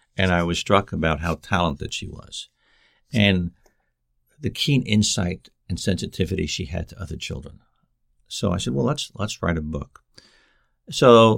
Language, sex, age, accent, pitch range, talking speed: English, male, 60-79, American, 85-110 Hz, 160 wpm